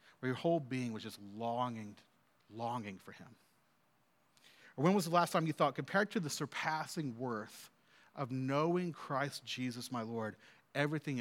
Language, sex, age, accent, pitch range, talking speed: English, male, 40-59, American, 135-180 Hz, 160 wpm